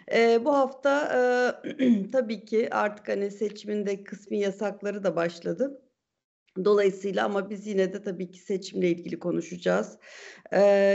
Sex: female